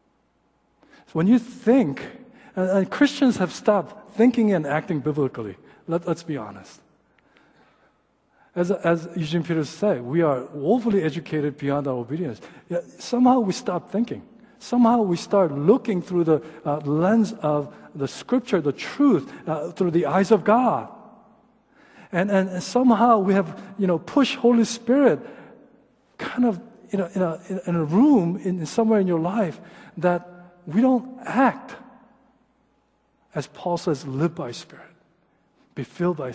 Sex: male